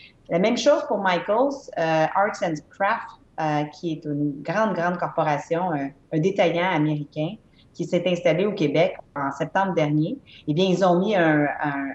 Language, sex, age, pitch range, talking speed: English, female, 30-49, 155-195 Hz, 175 wpm